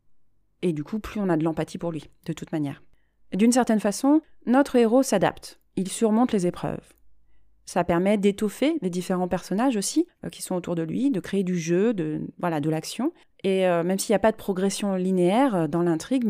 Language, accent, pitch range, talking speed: French, French, 170-215 Hz, 210 wpm